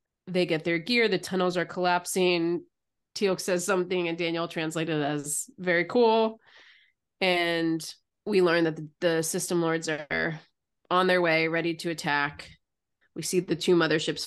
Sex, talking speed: female, 155 wpm